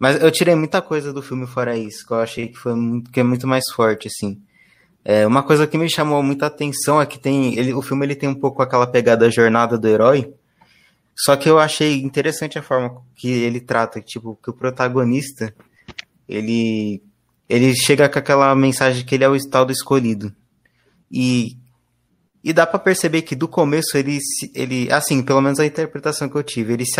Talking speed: 200 wpm